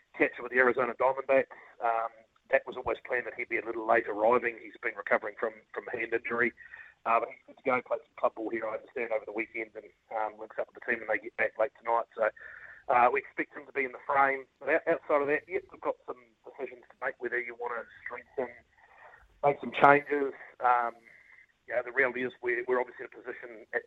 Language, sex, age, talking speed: English, male, 40-59, 240 wpm